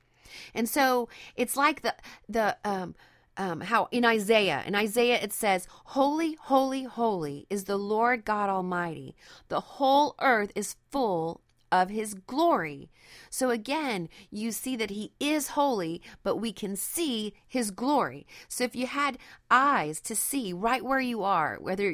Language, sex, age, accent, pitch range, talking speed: English, female, 30-49, American, 190-260 Hz, 155 wpm